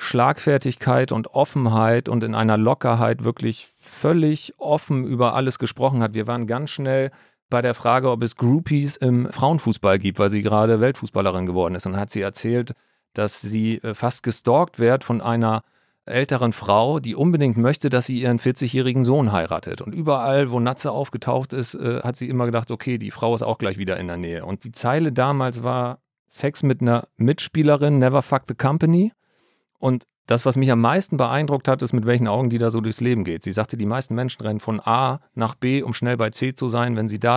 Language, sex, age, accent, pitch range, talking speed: German, male, 40-59, German, 110-130 Hz, 200 wpm